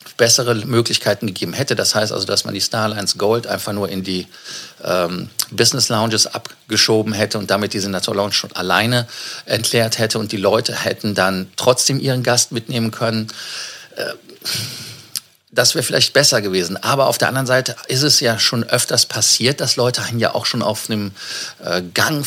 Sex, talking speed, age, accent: male, 175 wpm, 50-69, German